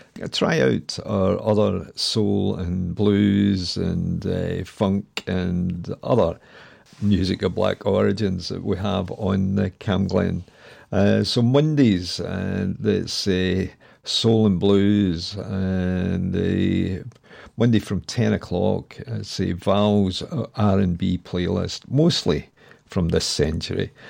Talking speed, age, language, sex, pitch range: 110 wpm, 50-69, English, male, 95-110 Hz